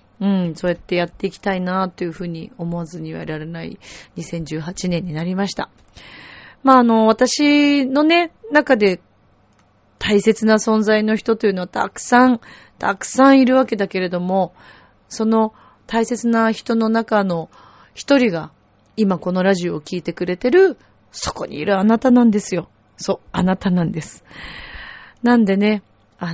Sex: female